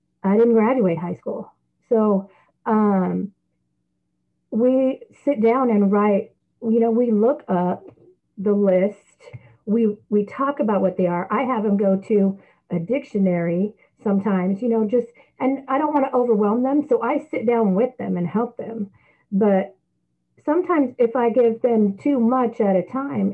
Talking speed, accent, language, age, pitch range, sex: 160 wpm, American, English, 40-59, 180-230 Hz, female